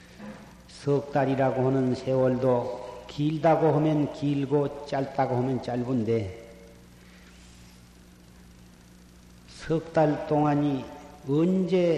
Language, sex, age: Korean, male, 40-59